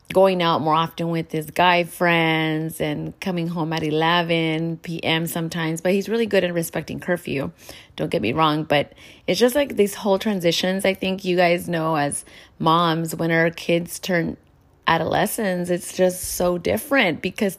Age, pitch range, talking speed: 30-49, 160-180 Hz, 170 wpm